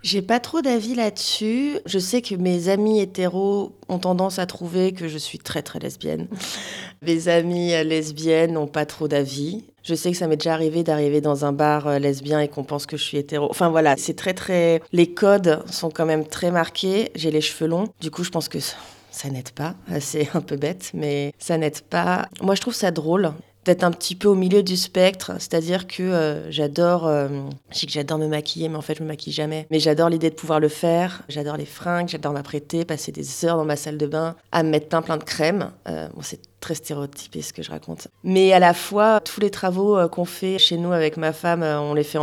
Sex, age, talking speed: female, 30-49, 235 wpm